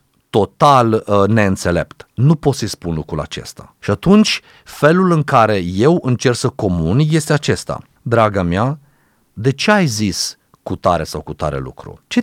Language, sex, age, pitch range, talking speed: Romanian, male, 30-49, 100-145 Hz, 160 wpm